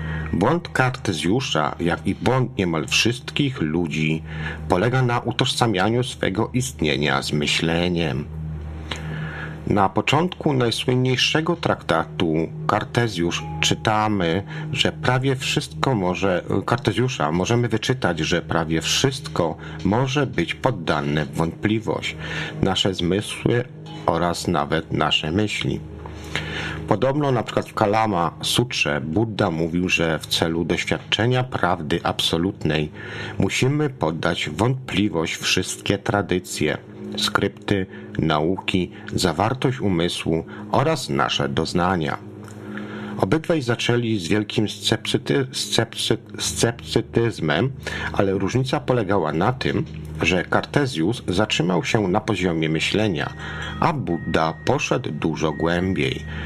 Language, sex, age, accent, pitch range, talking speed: Polish, male, 50-69, native, 80-120 Hz, 95 wpm